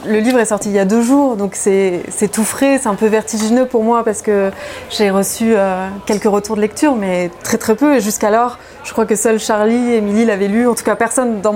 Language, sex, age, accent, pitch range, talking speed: French, female, 20-39, French, 195-230 Hz, 255 wpm